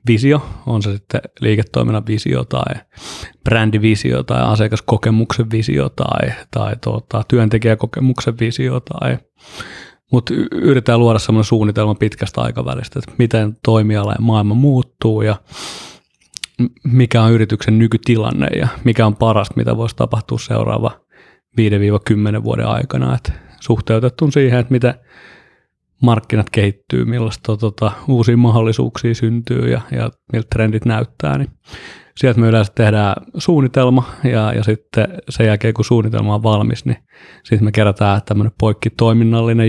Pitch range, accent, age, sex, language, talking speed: 105-120 Hz, native, 30-49, male, Finnish, 125 wpm